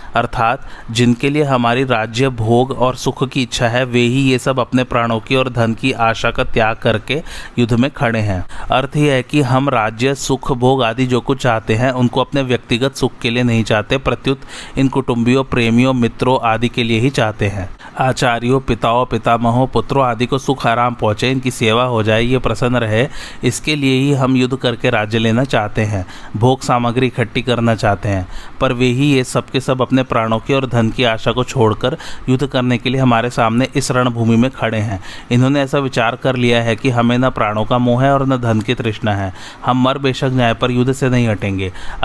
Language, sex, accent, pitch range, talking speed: Hindi, male, native, 115-130 Hz, 160 wpm